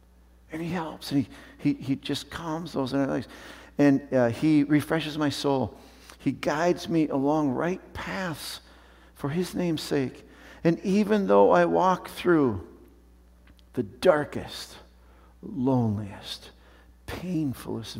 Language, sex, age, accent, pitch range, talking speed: English, male, 60-79, American, 90-150 Hz, 125 wpm